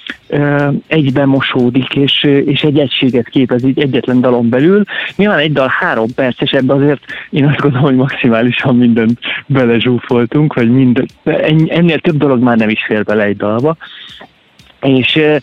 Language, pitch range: Hungarian, 125-160 Hz